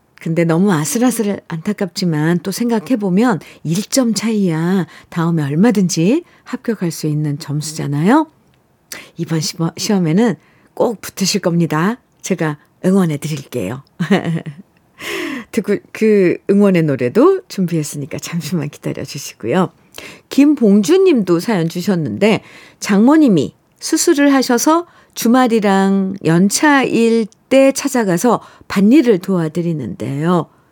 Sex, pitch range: female, 165-225 Hz